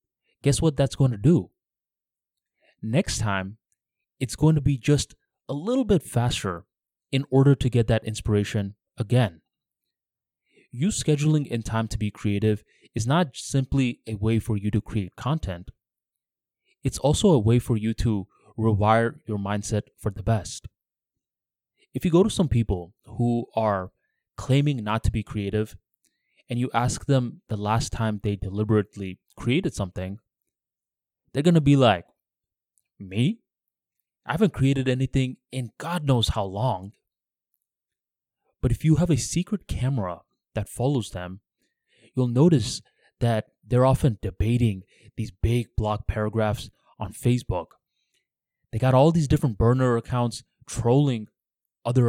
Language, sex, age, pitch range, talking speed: English, male, 20-39, 105-135 Hz, 145 wpm